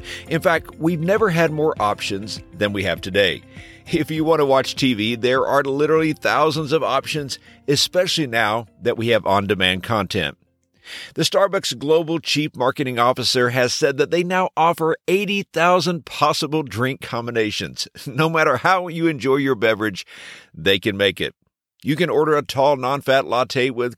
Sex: male